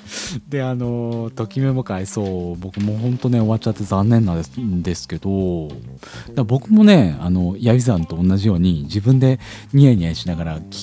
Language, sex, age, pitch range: Japanese, male, 40-59, 95-140 Hz